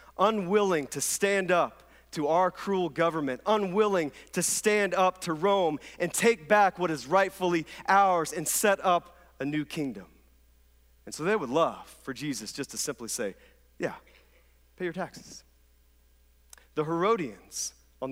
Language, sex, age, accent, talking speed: English, male, 40-59, American, 150 wpm